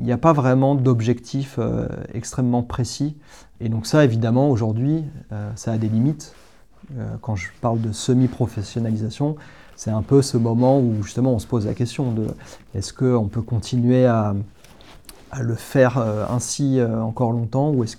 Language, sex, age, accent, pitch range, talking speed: French, male, 30-49, French, 110-130 Hz, 185 wpm